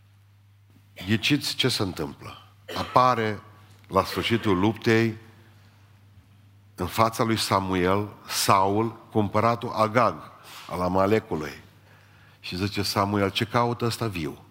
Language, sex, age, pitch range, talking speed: Romanian, male, 50-69, 95-105 Hz, 100 wpm